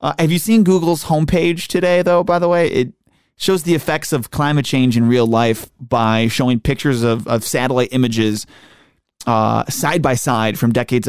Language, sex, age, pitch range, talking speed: English, male, 30-49, 115-155 Hz, 185 wpm